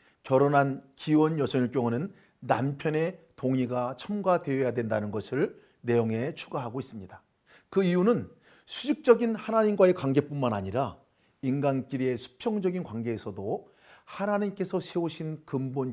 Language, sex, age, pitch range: Korean, male, 40-59, 120-155 Hz